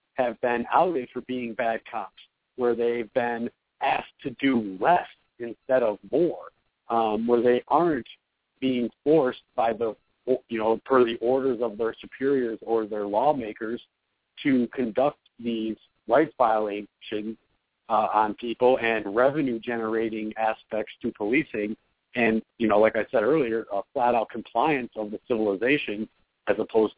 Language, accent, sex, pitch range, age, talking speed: English, American, male, 115-145 Hz, 50-69, 145 wpm